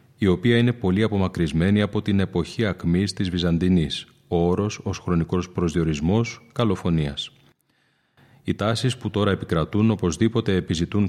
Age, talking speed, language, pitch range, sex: 30-49, 130 wpm, Greek, 90-110 Hz, male